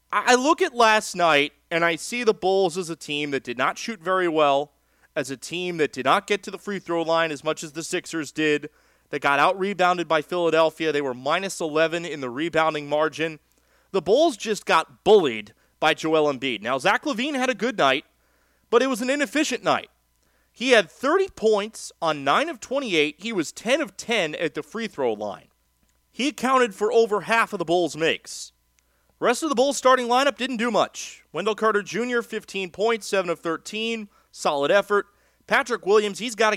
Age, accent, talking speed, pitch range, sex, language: 30-49, American, 195 wpm, 160-225 Hz, male, English